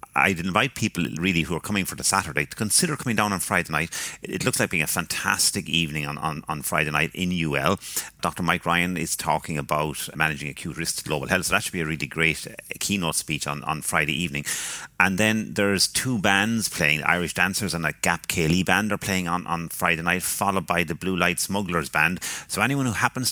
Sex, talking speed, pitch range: male, 225 wpm, 75-95 Hz